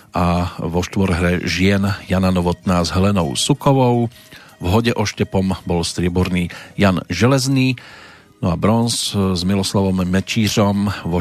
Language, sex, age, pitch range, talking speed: Slovak, male, 40-59, 90-115 Hz, 130 wpm